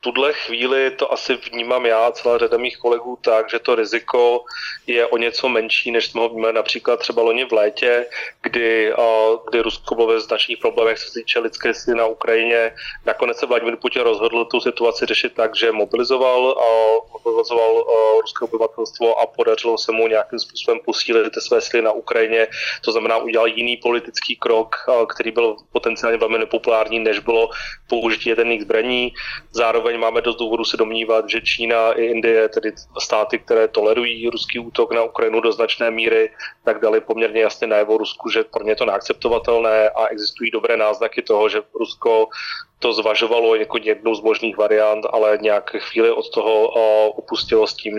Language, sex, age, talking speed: Slovak, male, 30-49, 180 wpm